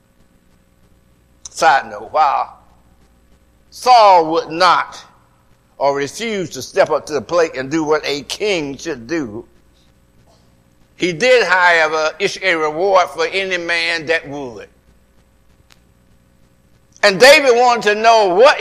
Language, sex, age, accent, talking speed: English, male, 60-79, American, 125 wpm